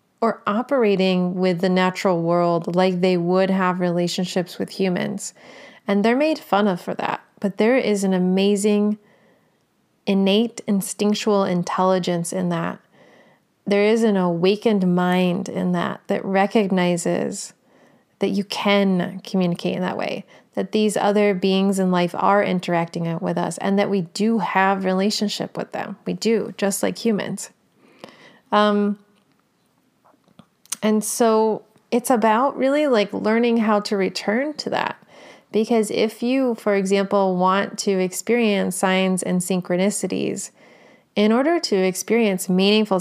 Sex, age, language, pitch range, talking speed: female, 30-49, English, 185-215 Hz, 135 wpm